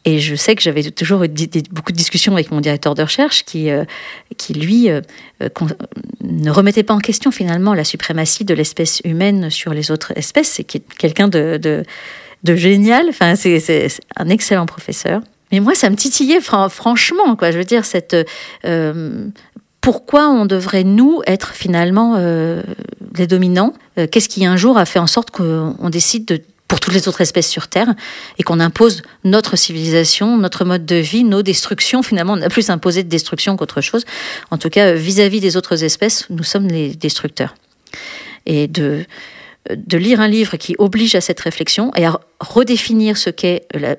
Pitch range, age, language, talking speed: 165-215 Hz, 40-59, French, 185 wpm